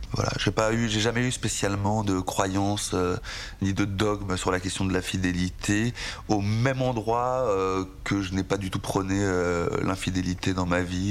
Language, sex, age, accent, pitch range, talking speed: French, male, 30-49, French, 95-105 Hz, 195 wpm